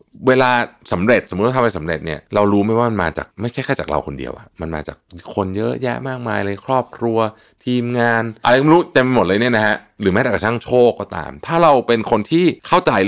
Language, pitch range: Thai, 80-120 Hz